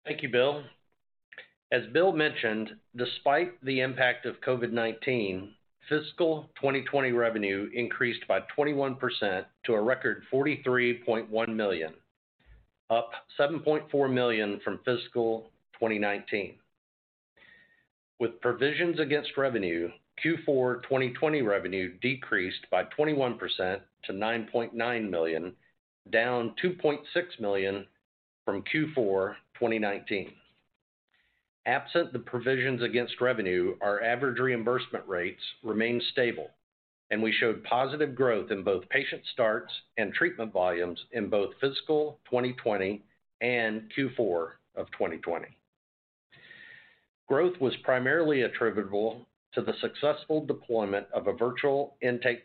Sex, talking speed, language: male, 105 wpm, English